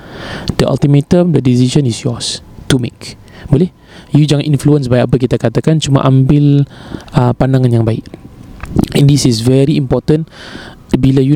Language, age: Malay, 20-39